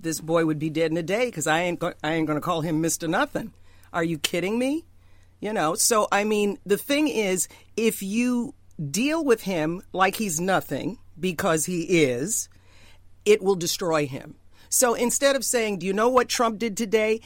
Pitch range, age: 140-210 Hz, 50-69